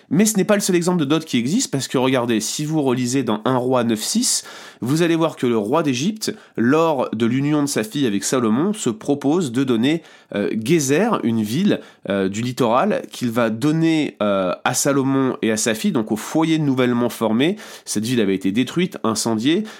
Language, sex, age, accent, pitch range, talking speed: French, male, 30-49, French, 120-175 Hz, 205 wpm